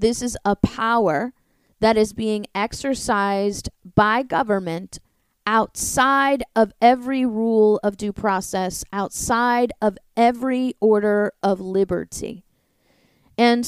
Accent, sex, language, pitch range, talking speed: American, female, English, 215-265 Hz, 105 wpm